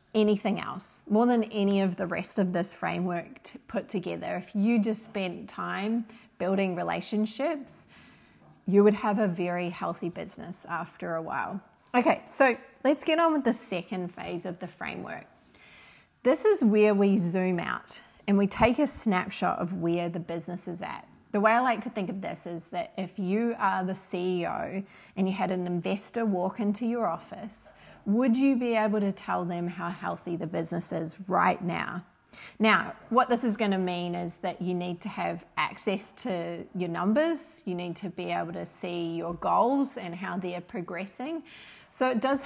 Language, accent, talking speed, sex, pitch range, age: English, Australian, 185 wpm, female, 175-220 Hz, 30-49